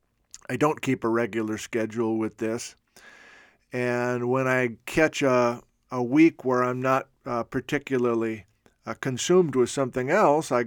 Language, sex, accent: English, male, American